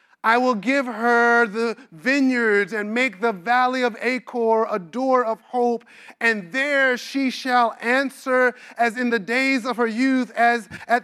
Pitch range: 235-270 Hz